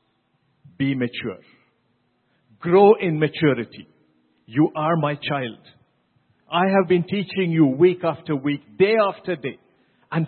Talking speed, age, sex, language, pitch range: 125 wpm, 50-69, male, English, 140-215 Hz